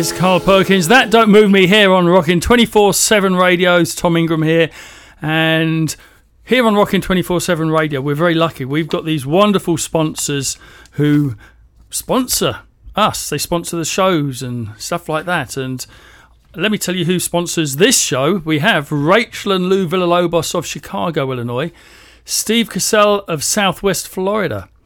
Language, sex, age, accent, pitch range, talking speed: English, male, 40-59, British, 155-190 Hz, 155 wpm